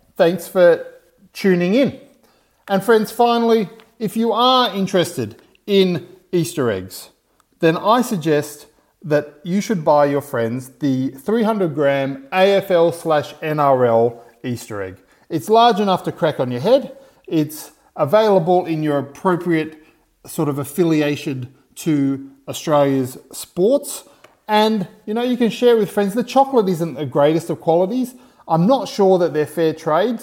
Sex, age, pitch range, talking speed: male, 40-59, 150-195 Hz, 140 wpm